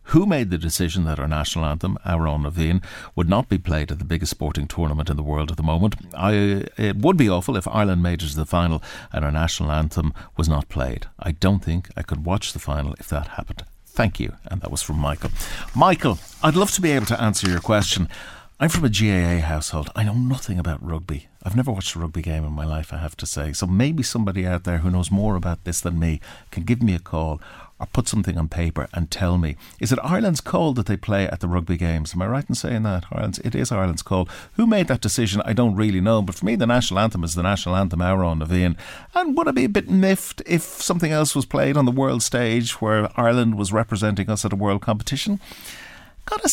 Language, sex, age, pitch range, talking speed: English, male, 60-79, 85-110 Hz, 240 wpm